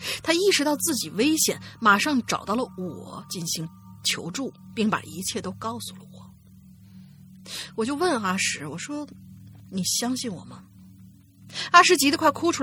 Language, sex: Chinese, female